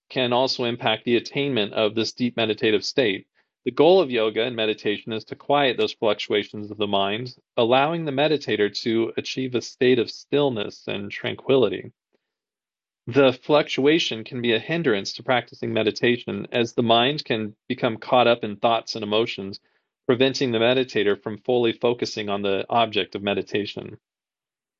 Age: 40-59